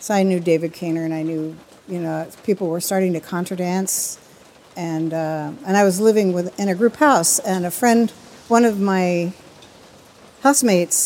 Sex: female